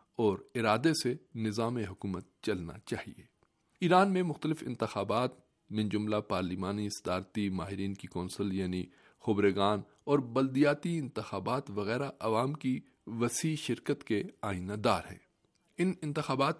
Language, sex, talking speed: Urdu, male, 120 wpm